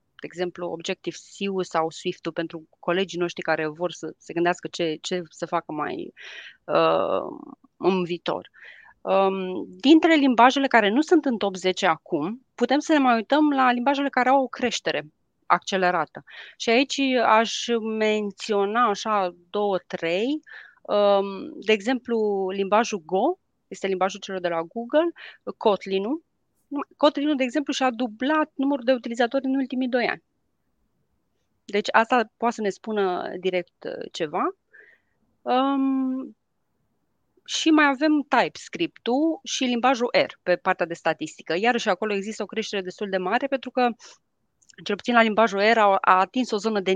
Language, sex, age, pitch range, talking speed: Romanian, female, 30-49, 190-270 Hz, 145 wpm